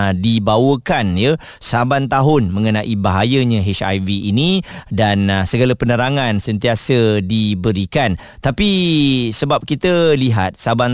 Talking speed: 105 wpm